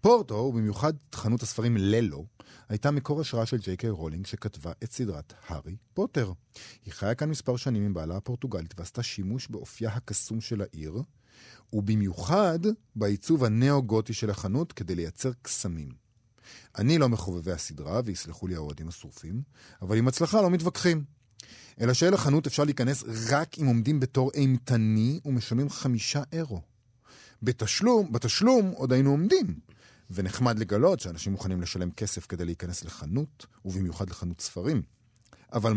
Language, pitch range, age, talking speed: Hebrew, 100-140 Hz, 40-59, 135 wpm